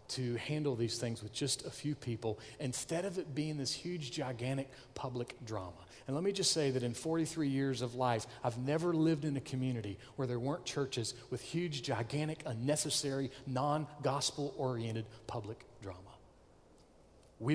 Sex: male